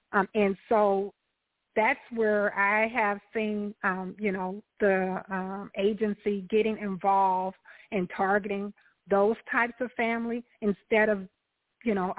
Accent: American